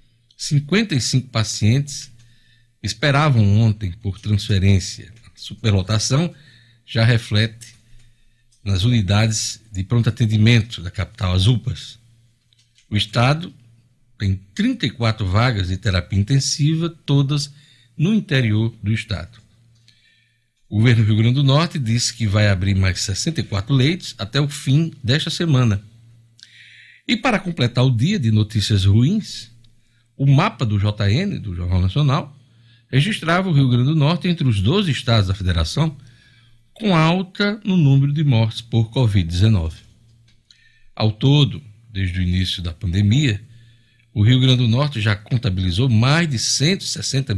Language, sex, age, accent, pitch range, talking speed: Portuguese, male, 60-79, Brazilian, 110-135 Hz, 130 wpm